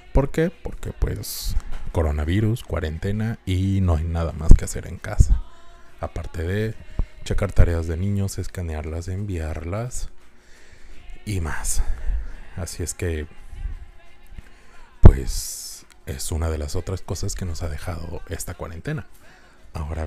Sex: male